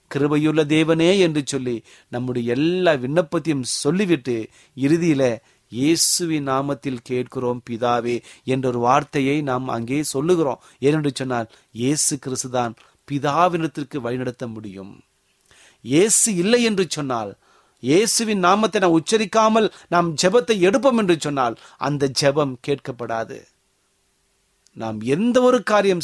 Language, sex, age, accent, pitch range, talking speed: Tamil, male, 30-49, native, 125-180 Hz, 105 wpm